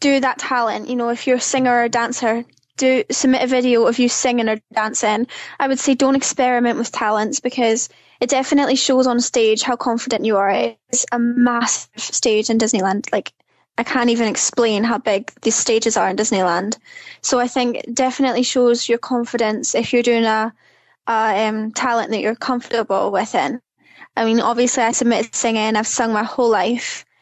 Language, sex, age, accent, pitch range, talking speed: English, female, 10-29, British, 220-255 Hz, 190 wpm